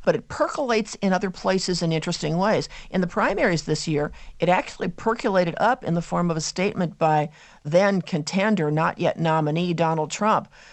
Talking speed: 180 wpm